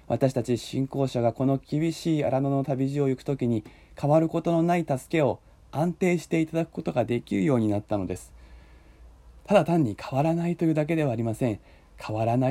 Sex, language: male, Japanese